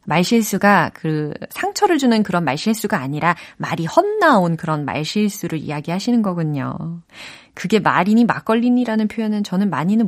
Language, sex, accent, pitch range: Korean, female, native, 165-240 Hz